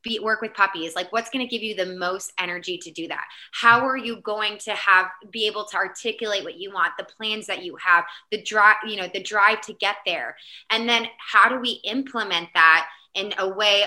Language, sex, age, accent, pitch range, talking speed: English, female, 20-39, American, 180-220 Hz, 230 wpm